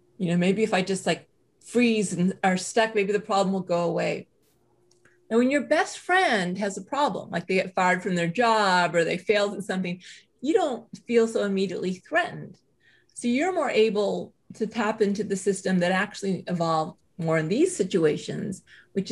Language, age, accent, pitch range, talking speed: English, 30-49, American, 185-230 Hz, 190 wpm